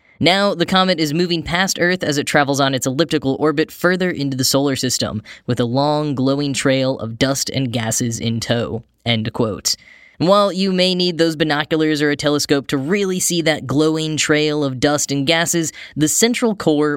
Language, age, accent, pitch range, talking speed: English, 10-29, American, 130-170 Hz, 190 wpm